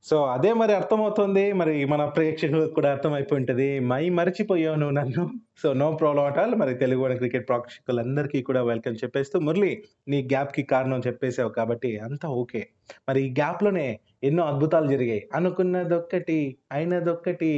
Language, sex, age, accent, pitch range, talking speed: Telugu, male, 20-39, native, 130-165 Hz, 135 wpm